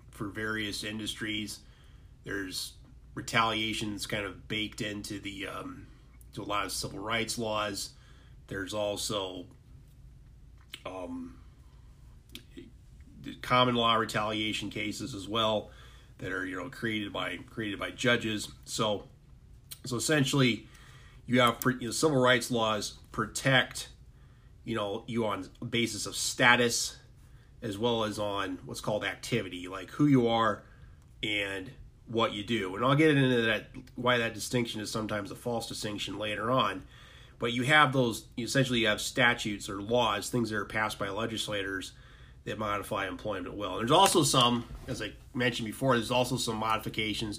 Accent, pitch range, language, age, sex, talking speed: American, 105-125 Hz, English, 30-49, male, 150 wpm